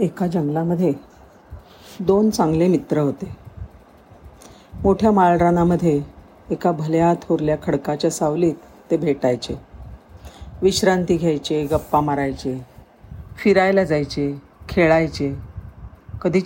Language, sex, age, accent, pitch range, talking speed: Marathi, female, 50-69, native, 145-195 Hz, 85 wpm